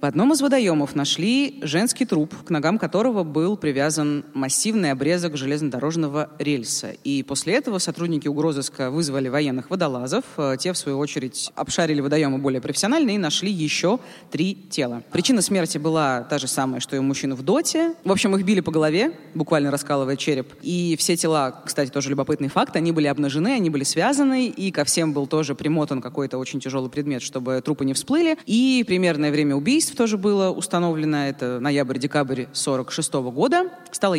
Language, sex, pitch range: Russian, female, 140-185 Hz